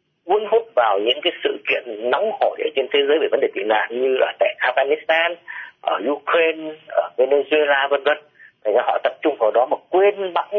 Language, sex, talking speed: Vietnamese, male, 210 wpm